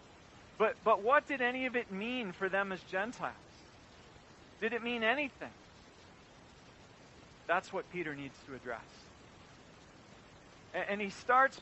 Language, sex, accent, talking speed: English, male, American, 135 wpm